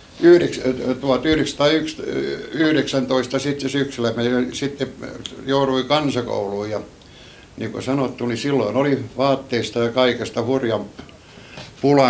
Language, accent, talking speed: Finnish, native, 100 wpm